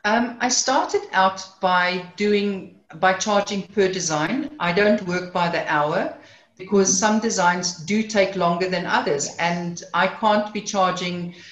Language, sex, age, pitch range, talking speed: English, female, 50-69, 170-210 Hz, 150 wpm